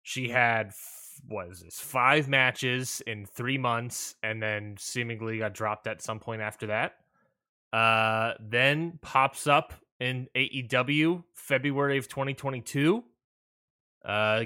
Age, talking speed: 20-39, 120 wpm